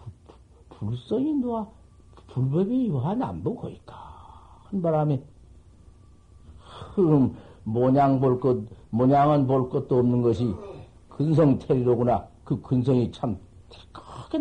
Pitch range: 90-145 Hz